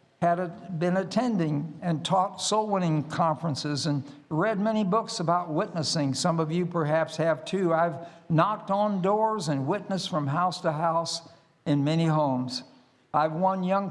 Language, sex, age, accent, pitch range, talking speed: English, male, 60-79, American, 155-190 Hz, 155 wpm